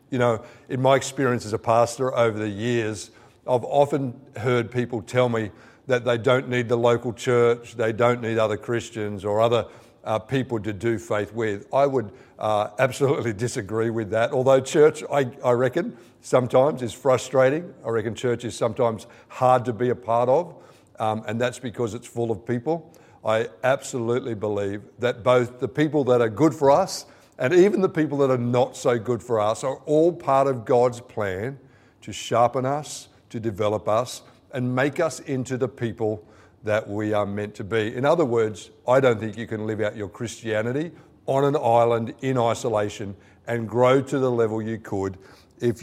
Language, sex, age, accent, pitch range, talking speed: English, male, 50-69, Australian, 110-130 Hz, 185 wpm